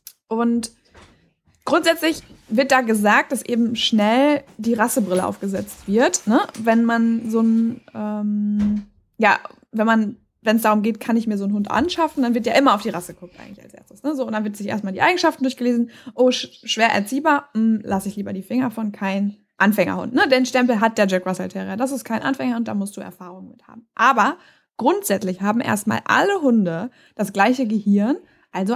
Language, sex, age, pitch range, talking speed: German, female, 20-39, 210-255 Hz, 195 wpm